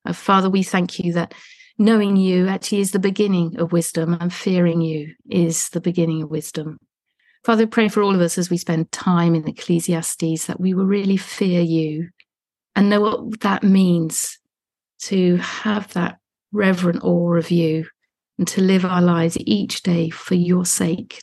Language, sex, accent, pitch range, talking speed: English, female, British, 170-200 Hz, 180 wpm